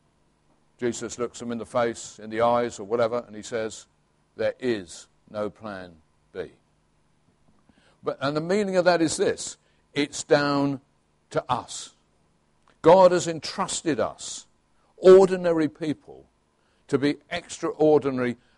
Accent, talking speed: British, 130 wpm